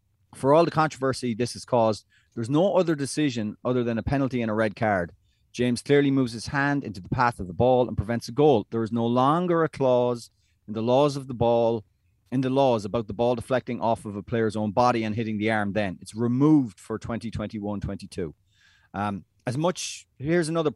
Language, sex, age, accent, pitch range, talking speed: English, male, 30-49, Irish, 105-135 Hz, 215 wpm